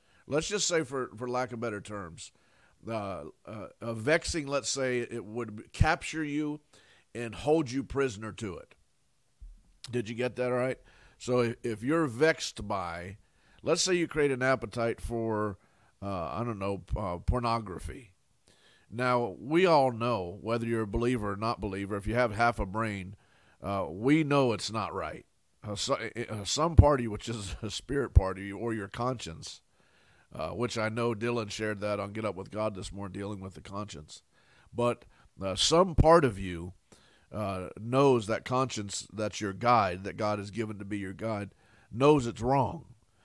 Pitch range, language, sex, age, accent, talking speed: 105-130 Hz, English, male, 50-69, American, 170 wpm